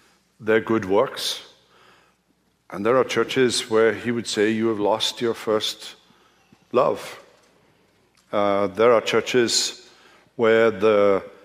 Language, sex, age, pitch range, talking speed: English, male, 60-79, 100-115 Hz, 120 wpm